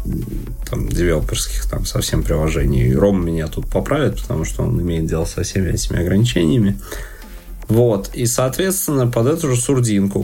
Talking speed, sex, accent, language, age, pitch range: 145 wpm, male, native, Russian, 20-39, 95-115 Hz